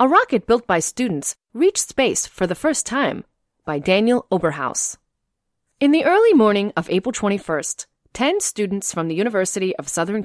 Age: 30-49